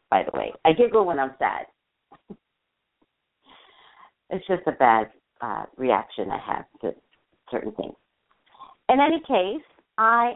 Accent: American